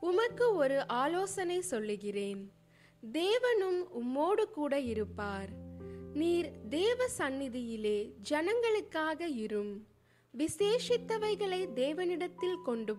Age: 20-39